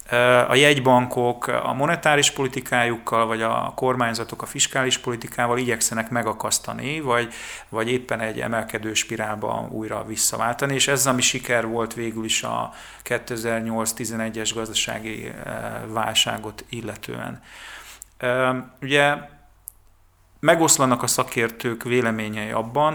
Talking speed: 100 wpm